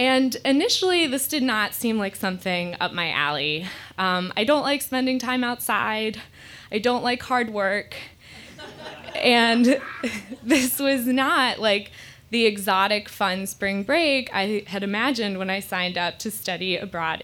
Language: English